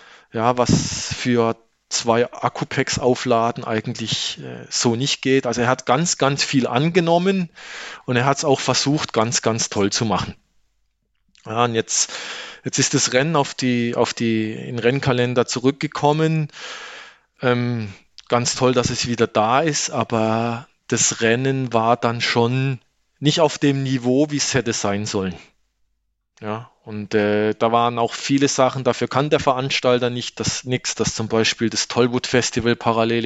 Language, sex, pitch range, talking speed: German, male, 115-135 Hz, 155 wpm